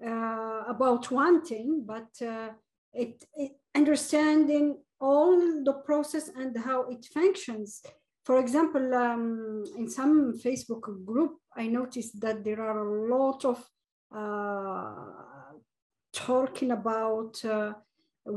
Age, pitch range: 50-69, 230-285 Hz